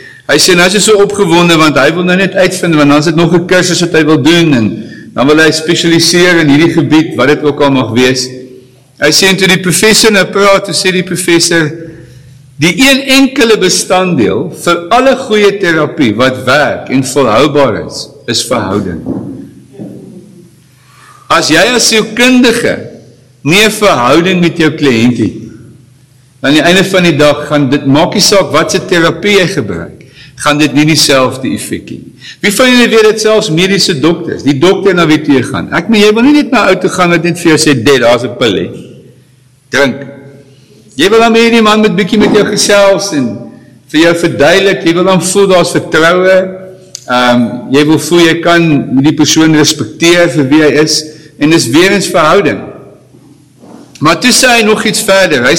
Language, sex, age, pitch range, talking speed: English, male, 60-79, 145-195 Hz, 190 wpm